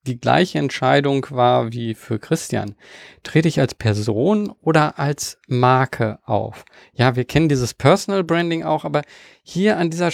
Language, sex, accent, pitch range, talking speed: German, male, German, 125-170 Hz, 155 wpm